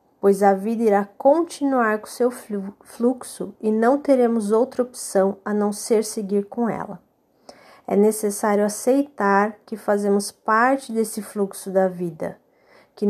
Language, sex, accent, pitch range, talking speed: Portuguese, female, Brazilian, 200-240 Hz, 140 wpm